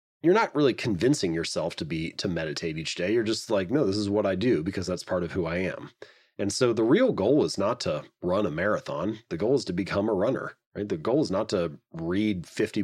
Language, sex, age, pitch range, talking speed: English, male, 30-49, 90-115 Hz, 250 wpm